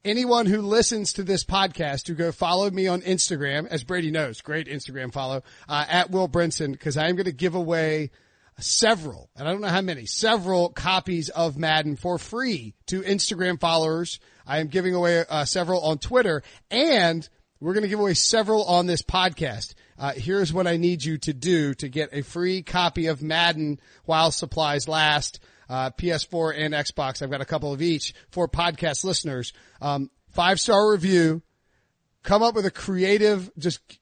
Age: 40-59